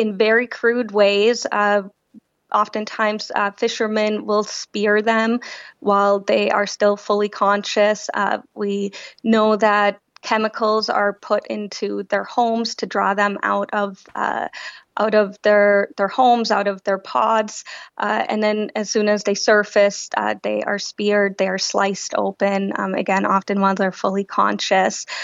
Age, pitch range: 20-39, 200-215 Hz